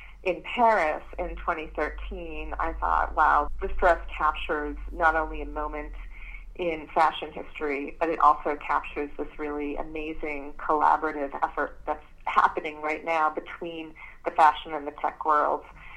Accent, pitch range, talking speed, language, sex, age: American, 150-175 Hz, 140 wpm, English, female, 30-49